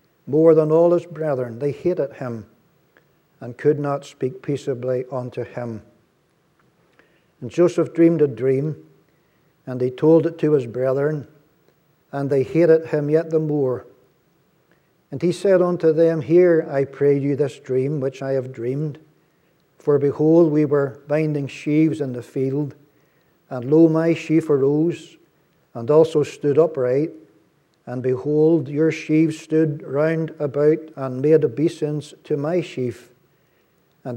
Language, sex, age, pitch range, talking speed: English, male, 60-79, 135-160 Hz, 140 wpm